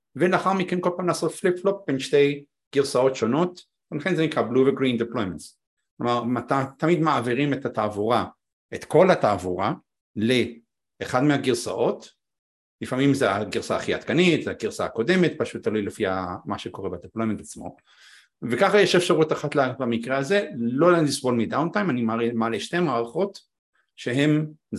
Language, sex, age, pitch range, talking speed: Hebrew, male, 50-69, 120-170 Hz, 135 wpm